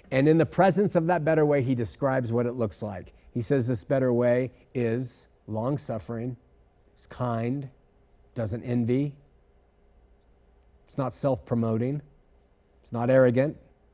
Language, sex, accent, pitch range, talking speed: English, male, American, 110-150 Hz, 135 wpm